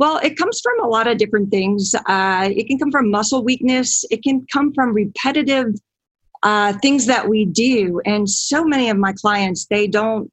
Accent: American